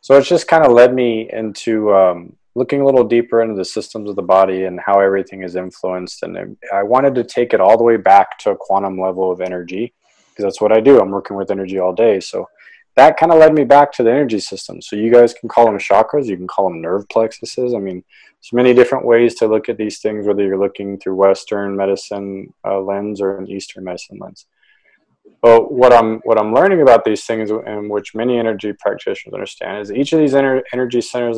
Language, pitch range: English, 100-125 Hz